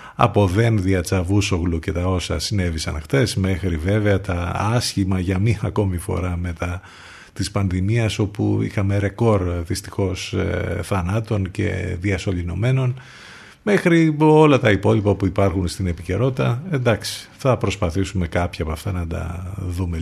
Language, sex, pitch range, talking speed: Greek, male, 90-115 Hz, 130 wpm